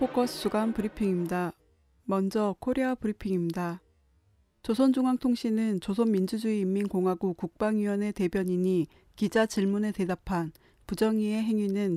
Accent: native